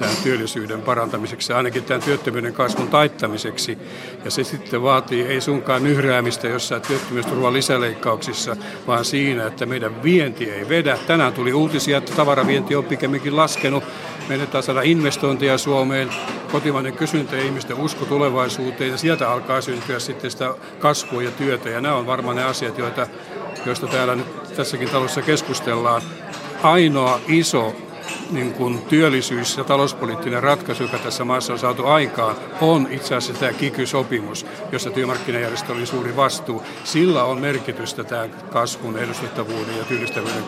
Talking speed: 145 wpm